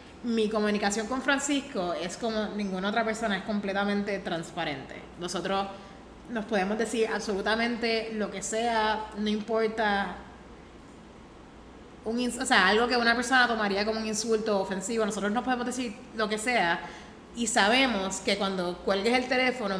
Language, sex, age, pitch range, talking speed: Spanish, female, 20-39, 195-230 Hz, 140 wpm